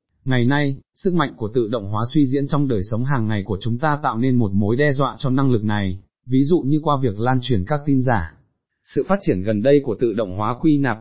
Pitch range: 110-145 Hz